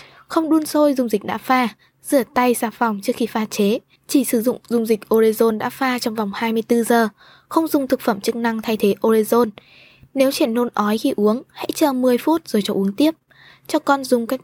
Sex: female